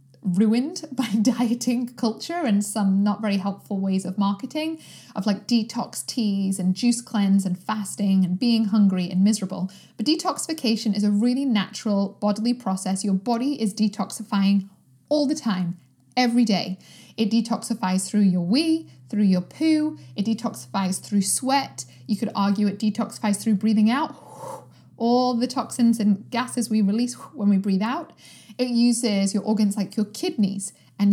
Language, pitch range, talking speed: English, 200-250 Hz, 160 wpm